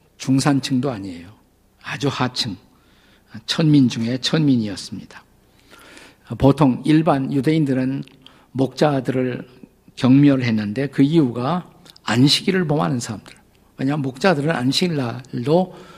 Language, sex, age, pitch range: Korean, male, 50-69, 120-155 Hz